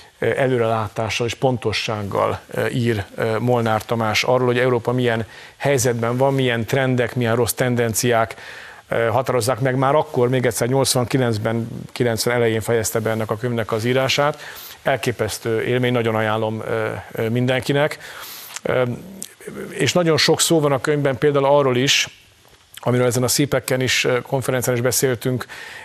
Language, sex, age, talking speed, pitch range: Hungarian, male, 40-59, 130 wpm, 110-125 Hz